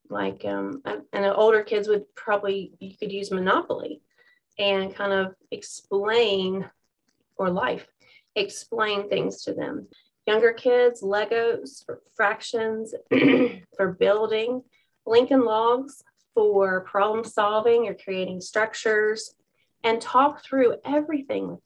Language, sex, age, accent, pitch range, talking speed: English, female, 30-49, American, 200-260 Hz, 115 wpm